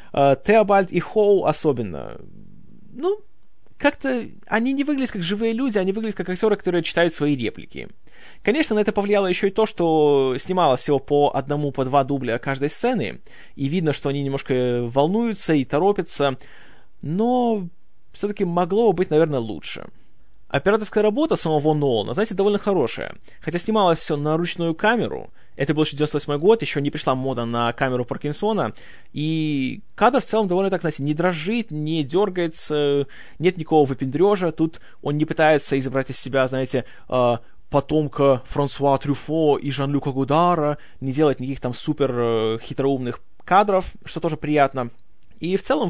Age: 20-39